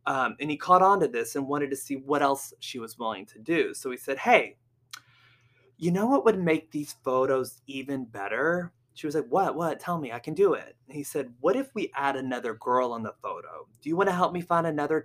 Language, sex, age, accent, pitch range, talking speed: English, male, 20-39, American, 125-170 Hz, 245 wpm